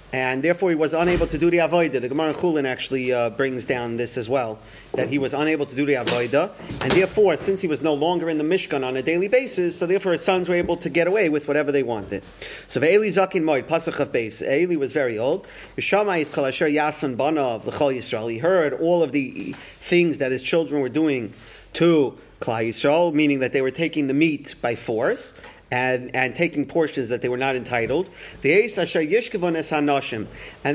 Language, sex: English, male